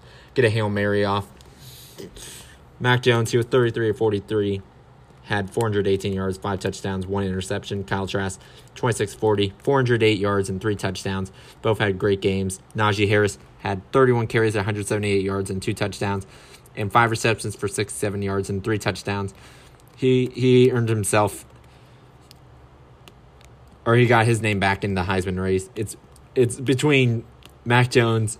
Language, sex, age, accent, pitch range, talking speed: English, male, 20-39, American, 95-110 Hz, 175 wpm